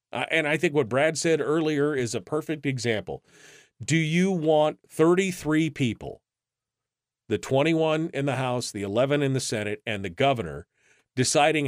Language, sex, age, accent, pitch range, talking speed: English, male, 40-59, American, 120-160 Hz, 155 wpm